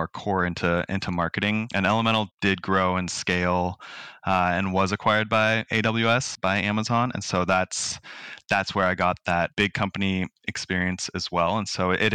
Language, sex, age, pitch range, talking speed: English, male, 20-39, 90-110 Hz, 170 wpm